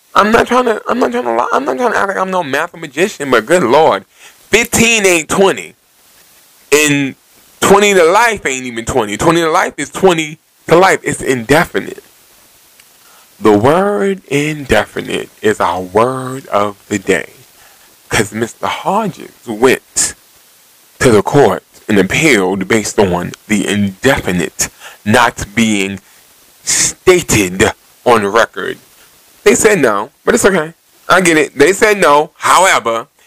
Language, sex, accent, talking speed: English, male, American, 145 wpm